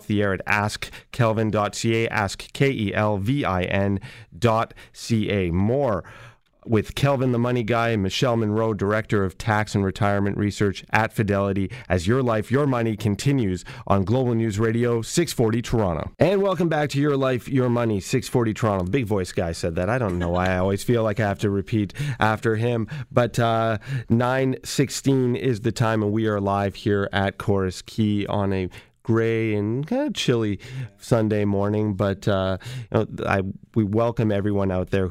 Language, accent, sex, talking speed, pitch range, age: English, American, male, 165 wpm, 95-115 Hz, 30-49